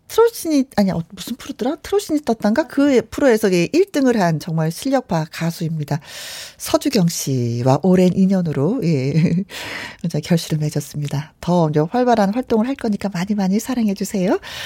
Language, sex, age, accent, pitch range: Korean, female, 40-59, native, 180-275 Hz